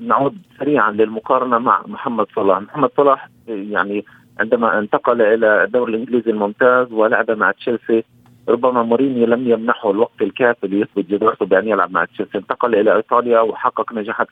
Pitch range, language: 105-125 Hz, Arabic